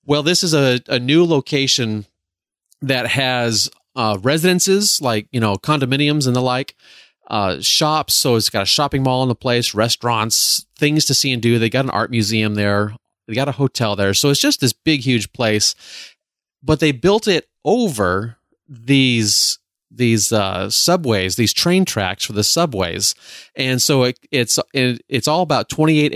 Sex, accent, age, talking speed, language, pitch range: male, American, 30-49, 175 wpm, English, 110-135 Hz